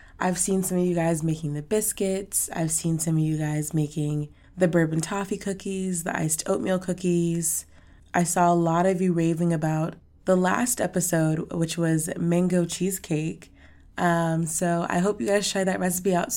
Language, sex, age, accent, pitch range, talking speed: English, female, 20-39, American, 160-185 Hz, 180 wpm